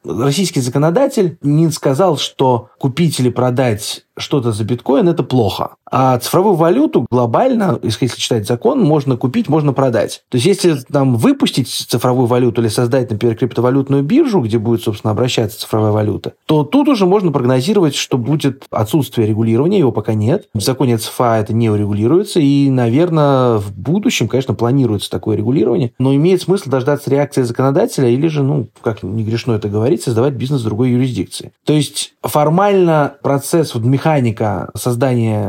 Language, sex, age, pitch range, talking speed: Russian, male, 20-39, 115-145 Hz, 155 wpm